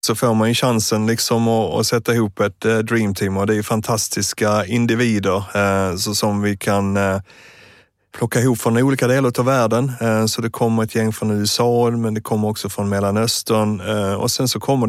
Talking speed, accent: 175 wpm, native